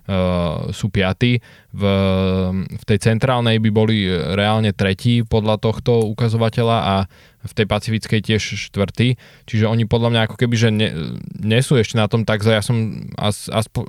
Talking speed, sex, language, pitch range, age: 155 wpm, male, Slovak, 100-115 Hz, 20-39